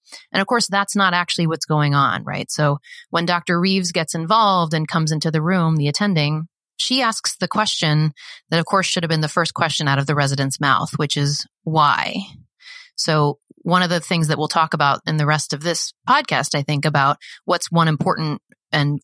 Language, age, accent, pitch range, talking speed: English, 30-49, American, 150-175 Hz, 210 wpm